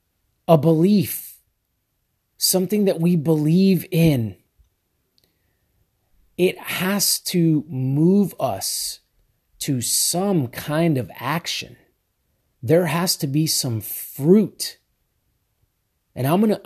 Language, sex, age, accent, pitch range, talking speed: English, male, 30-49, American, 120-160 Hz, 95 wpm